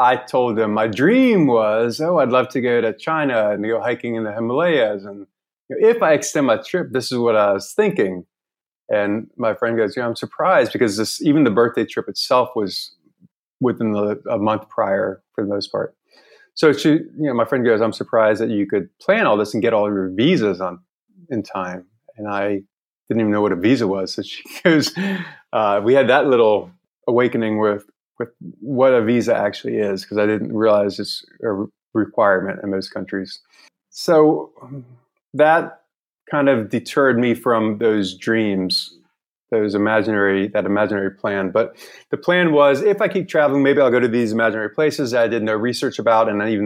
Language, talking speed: English, 200 wpm